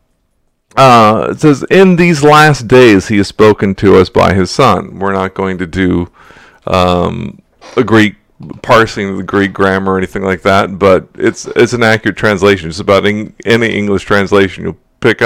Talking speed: 180 wpm